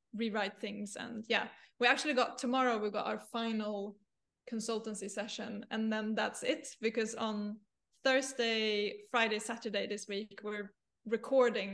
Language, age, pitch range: English, 20-39, 215-245 Hz